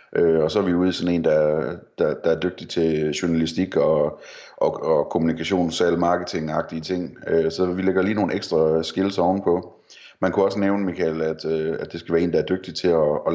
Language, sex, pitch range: Danish, male, 80-95 Hz